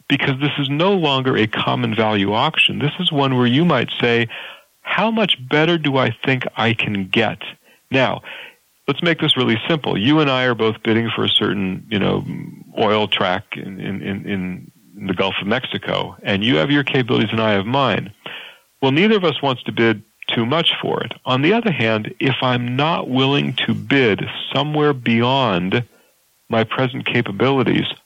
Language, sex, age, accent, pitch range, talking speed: English, male, 40-59, American, 115-150 Hz, 185 wpm